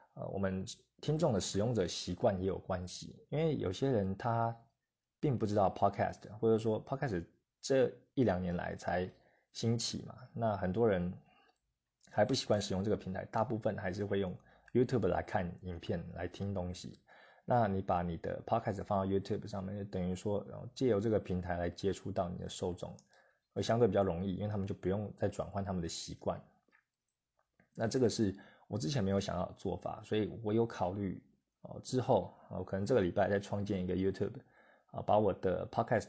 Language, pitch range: Chinese, 95-115 Hz